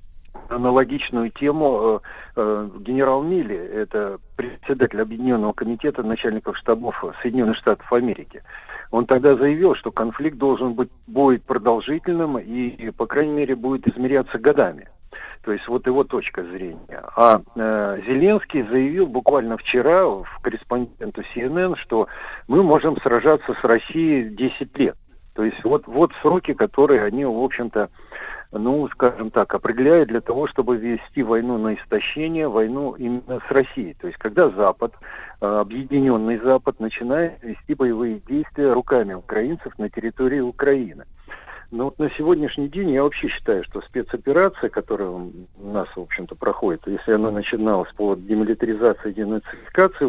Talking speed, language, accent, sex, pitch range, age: 140 wpm, Russian, native, male, 110-140 Hz, 50-69